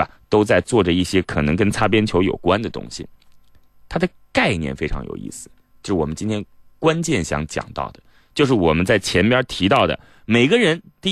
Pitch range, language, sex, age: 105-175 Hz, Chinese, male, 30-49